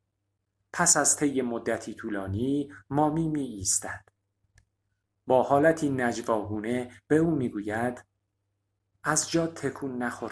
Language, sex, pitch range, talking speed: Persian, male, 100-145 Hz, 110 wpm